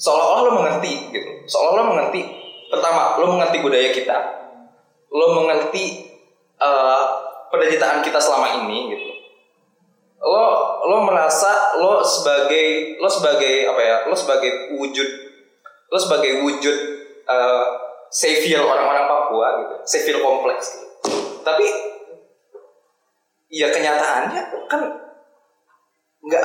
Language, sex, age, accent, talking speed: Indonesian, male, 20-39, native, 110 wpm